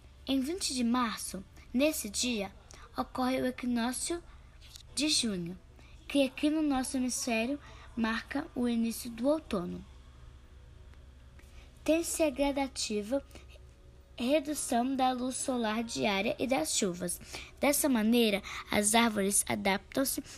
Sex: female